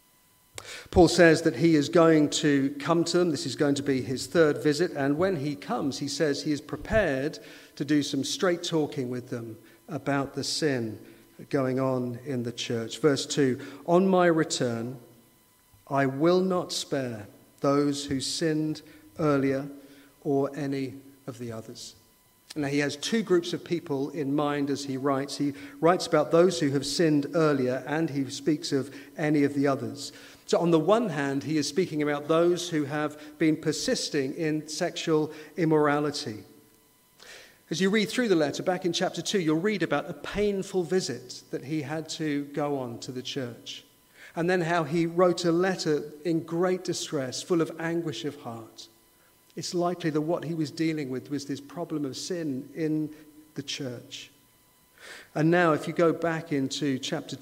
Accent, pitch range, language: British, 140-165 Hz, English